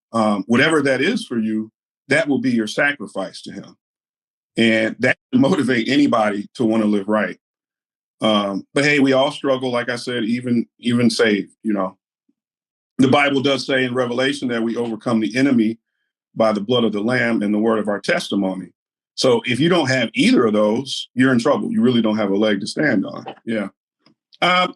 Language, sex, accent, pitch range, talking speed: English, male, American, 105-140 Hz, 195 wpm